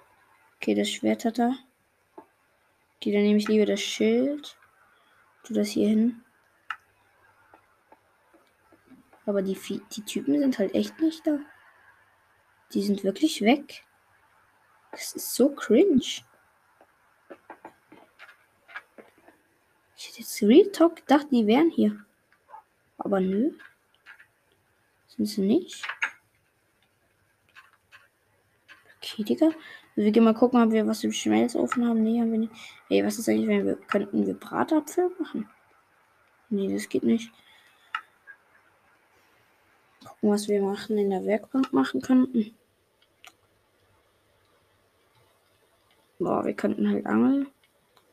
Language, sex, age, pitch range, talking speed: German, female, 20-39, 185-265 Hz, 115 wpm